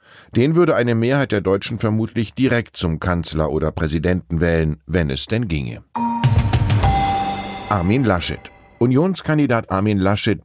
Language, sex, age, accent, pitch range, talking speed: German, male, 10-29, German, 85-115 Hz, 125 wpm